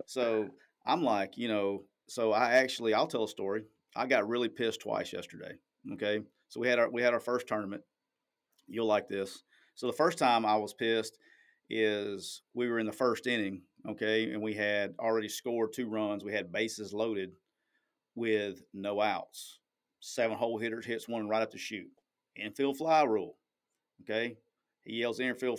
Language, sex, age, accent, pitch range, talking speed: English, male, 40-59, American, 110-135 Hz, 180 wpm